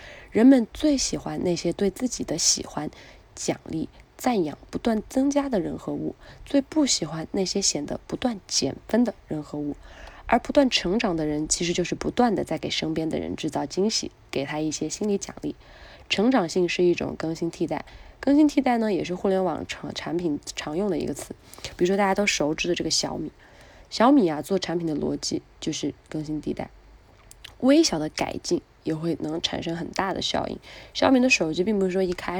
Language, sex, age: Chinese, female, 20-39